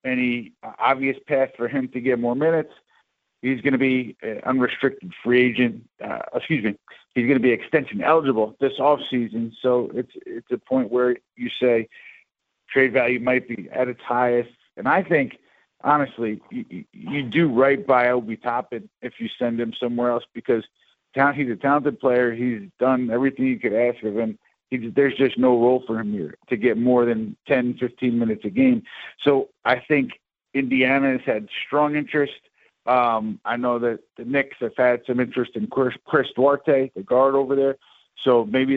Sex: male